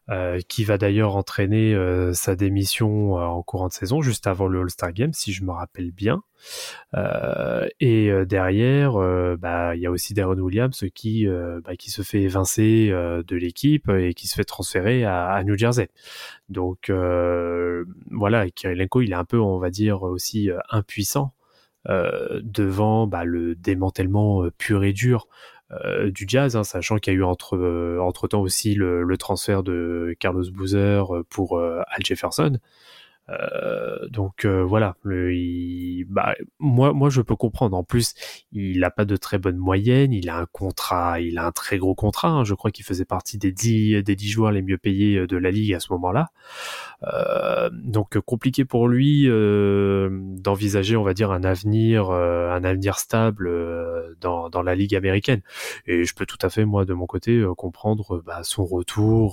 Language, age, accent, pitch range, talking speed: French, 20-39, French, 90-110 Hz, 190 wpm